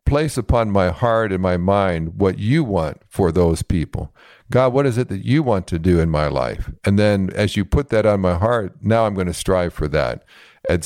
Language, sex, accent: English, male, American